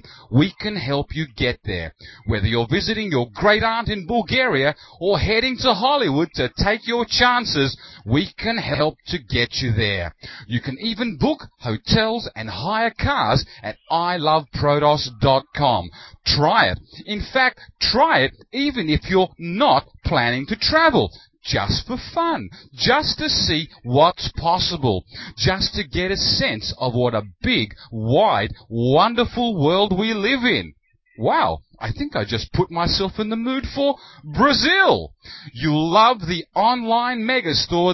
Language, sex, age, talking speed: English, male, 40-59, 145 wpm